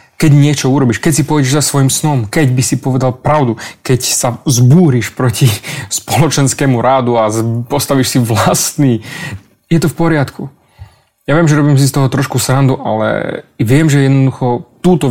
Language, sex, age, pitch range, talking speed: Slovak, male, 20-39, 120-145 Hz, 165 wpm